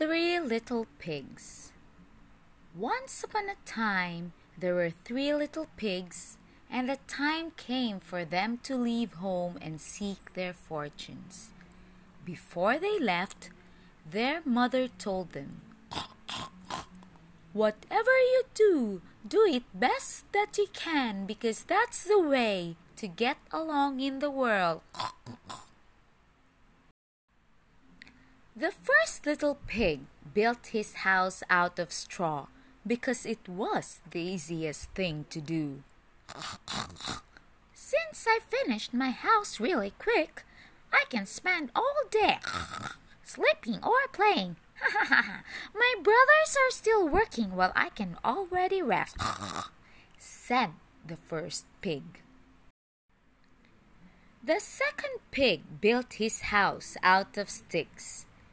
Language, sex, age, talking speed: English, female, 20-39, 110 wpm